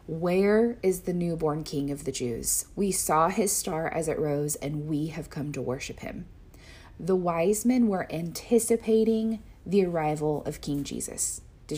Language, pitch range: English, 150-195 Hz